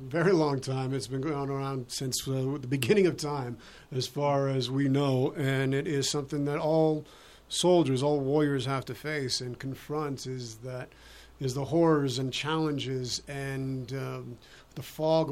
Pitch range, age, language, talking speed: 140-180 Hz, 50-69, English, 170 wpm